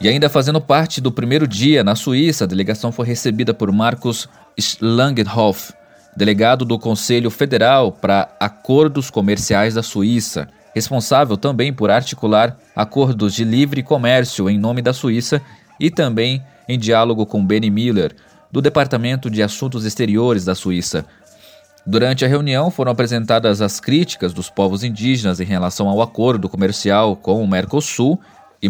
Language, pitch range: Portuguese, 110-140 Hz